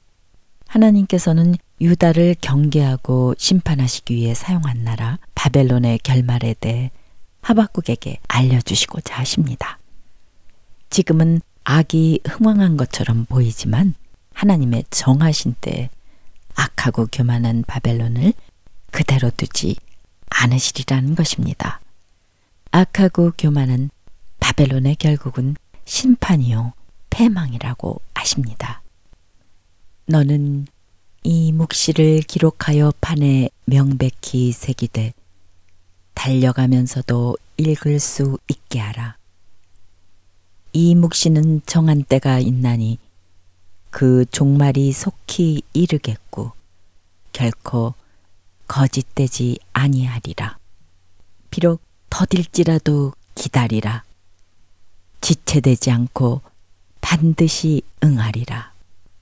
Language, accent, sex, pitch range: Korean, native, female, 100-150 Hz